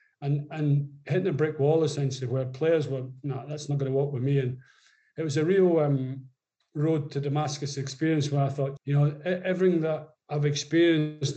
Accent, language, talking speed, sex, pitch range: British, English, 195 wpm, male, 140-155 Hz